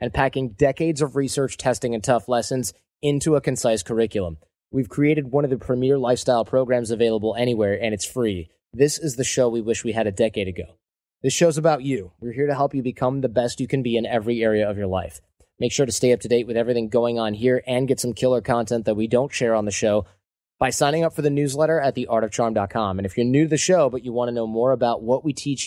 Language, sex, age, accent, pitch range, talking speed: English, male, 20-39, American, 110-130 Hz, 250 wpm